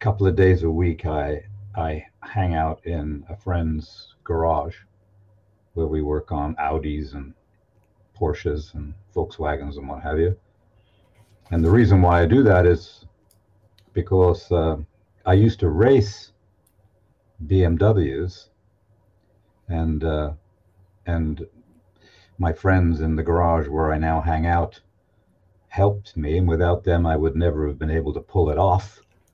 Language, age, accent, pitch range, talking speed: English, 50-69, American, 80-100 Hz, 140 wpm